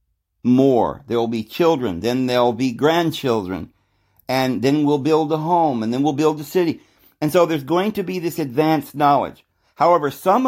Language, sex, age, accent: English, male, 50-69, American